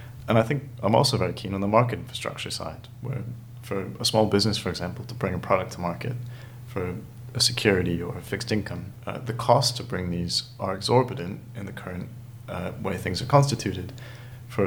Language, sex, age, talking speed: English, male, 30-49, 200 wpm